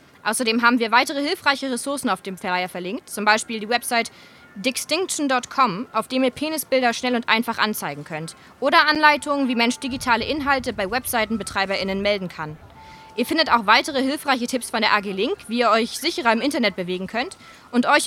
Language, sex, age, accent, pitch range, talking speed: German, female, 20-39, German, 210-270 Hz, 175 wpm